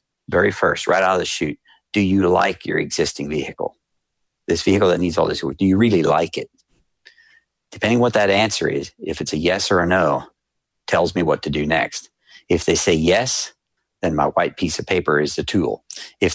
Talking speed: 210 wpm